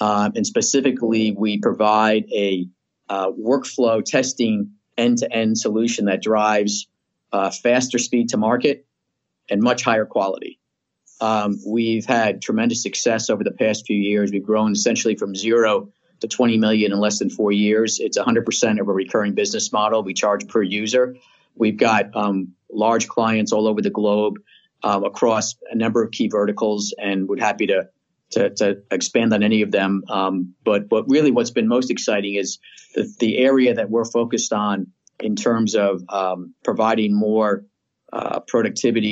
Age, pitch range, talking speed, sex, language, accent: 40-59, 105-115 Hz, 165 wpm, male, English, American